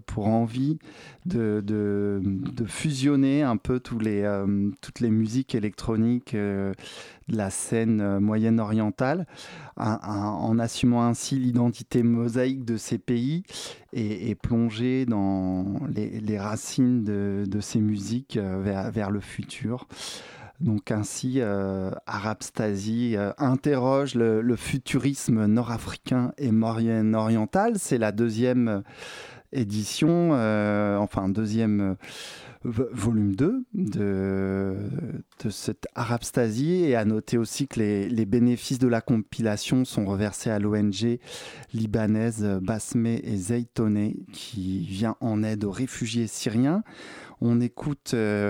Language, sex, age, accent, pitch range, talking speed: French, male, 20-39, French, 105-125 Hz, 125 wpm